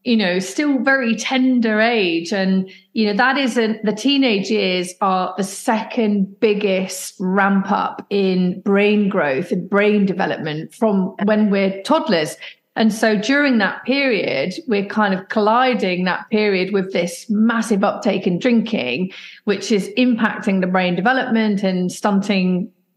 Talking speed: 145 wpm